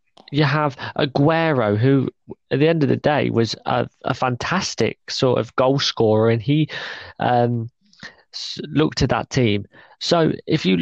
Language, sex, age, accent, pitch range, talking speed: English, male, 20-39, British, 115-145 Hz, 155 wpm